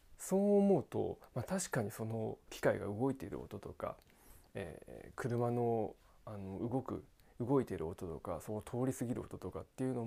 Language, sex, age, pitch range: Japanese, male, 20-39, 105-135 Hz